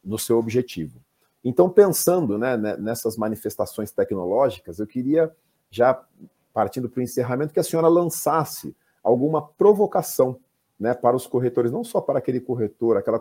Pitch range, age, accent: 115-145 Hz, 40-59, Brazilian